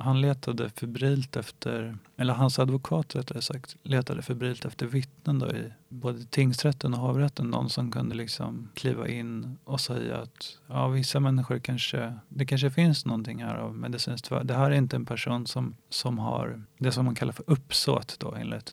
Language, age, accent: Swedish, 30-49, native